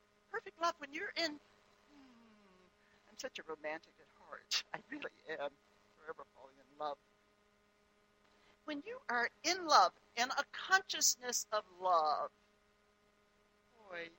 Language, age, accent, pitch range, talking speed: English, 60-79, American, 180-265 Hz, 125 wpm